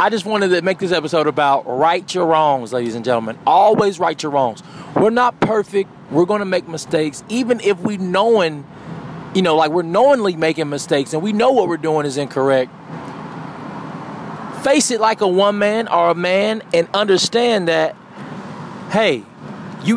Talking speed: 175 wpm